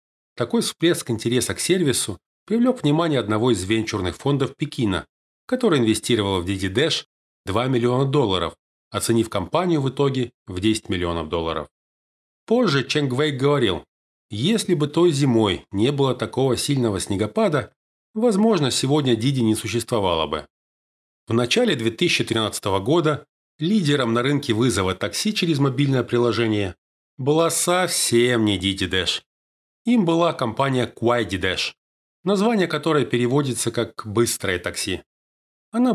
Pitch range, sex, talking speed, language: 105-155 Hz, male, 125 wpm, Russian